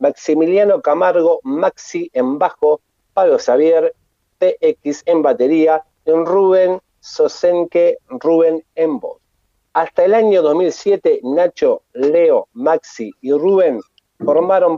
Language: Spanish